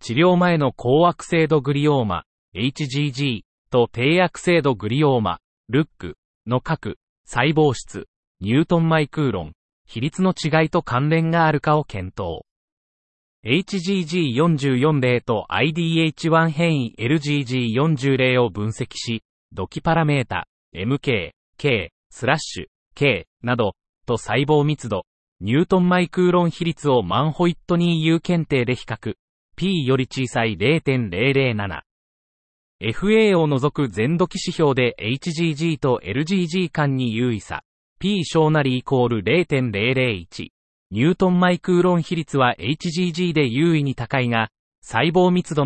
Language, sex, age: Japanese, male, 30-49